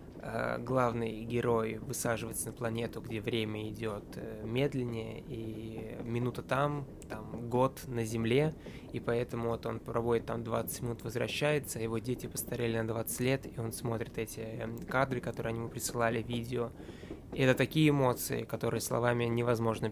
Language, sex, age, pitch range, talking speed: Russian, male, 20-39, 115-135 Hz, 140 wpm